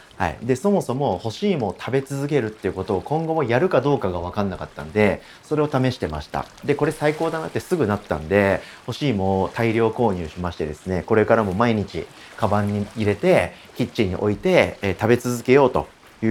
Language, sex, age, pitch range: Japanese, male, 40-59, 90-125 Hz